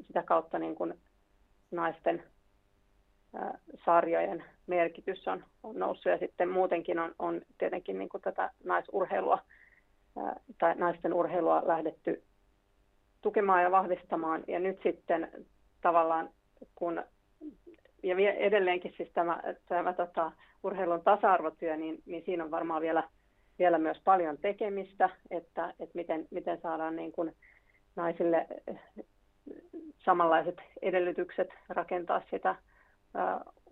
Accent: Finnish